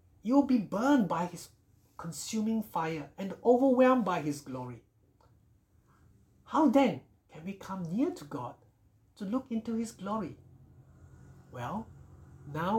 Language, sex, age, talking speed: English, male, 60-79, 125 wpm